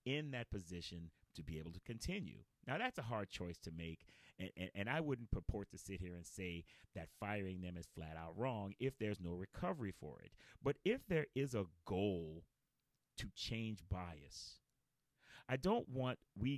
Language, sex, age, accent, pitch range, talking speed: English, male, 30-49, American, 90-130 Hz, 190 wpm